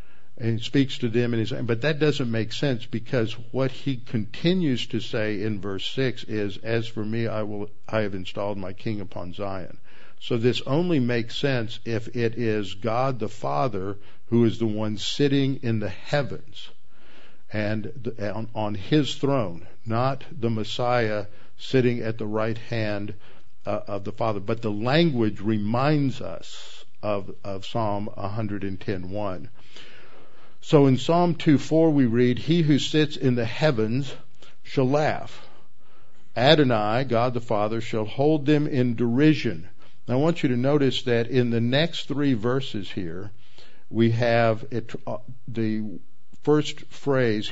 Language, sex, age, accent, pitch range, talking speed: English, male, 50-69, American, 105-130 Hz, 155 wpm